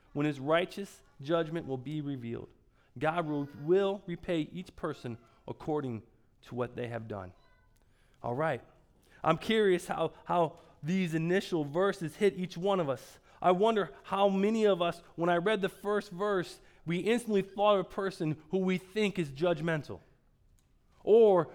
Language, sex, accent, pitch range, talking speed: English, male, American, 150-190 Hz, 160 wpm